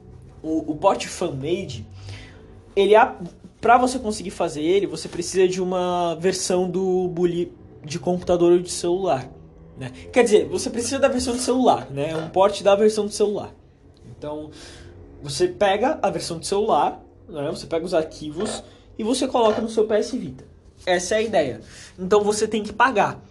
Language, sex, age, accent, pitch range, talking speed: Portuguese, male, 20-39, Brazilian, 150-210 Hz, 165 wpm